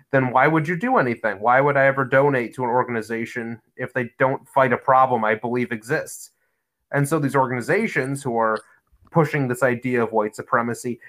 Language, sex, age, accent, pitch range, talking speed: English, male, 30-49, American, 120-145 Hz, 190 wpm